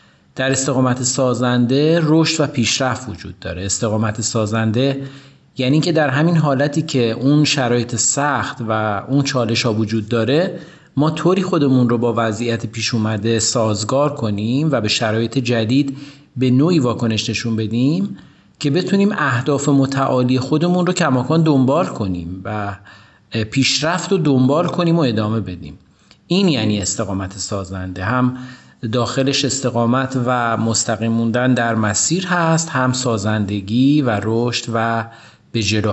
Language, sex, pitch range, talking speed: Persian, male, 110-140 Hz, 130 wpm